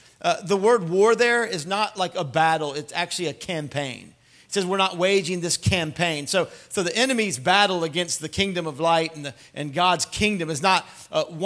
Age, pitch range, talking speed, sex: 40-59, 160-195 Hz, 200 wpm, male